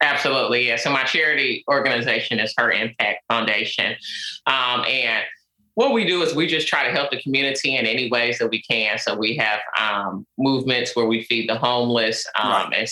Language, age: English, 30-49